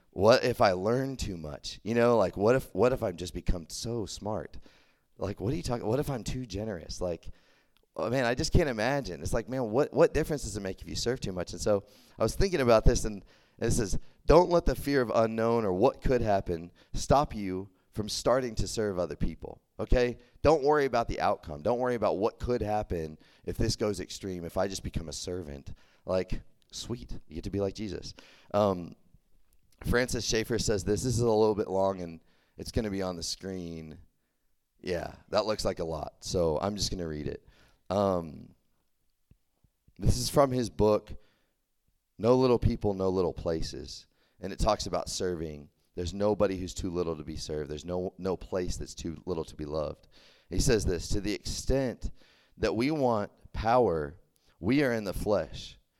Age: 30-49